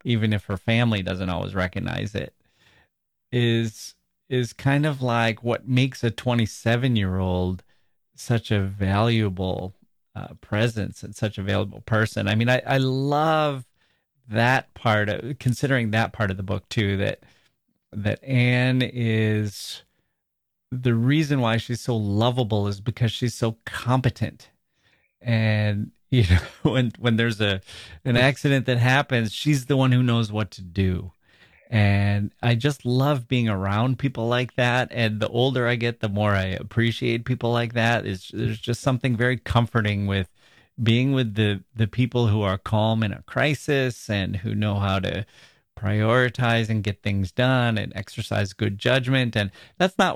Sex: male